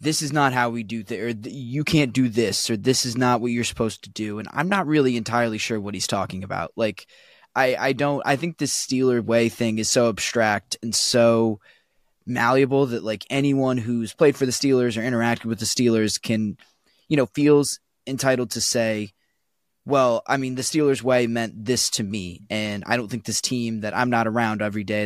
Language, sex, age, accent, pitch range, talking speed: English, male, 20-39, American, 110-135 Hz, 215 wpm